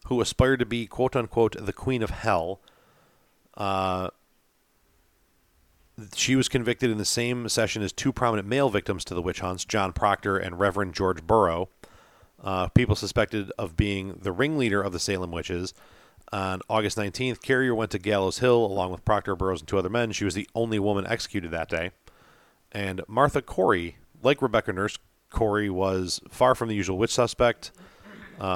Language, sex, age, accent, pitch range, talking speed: English, male, 40-59, American, 95-115 Hz, 170 wpm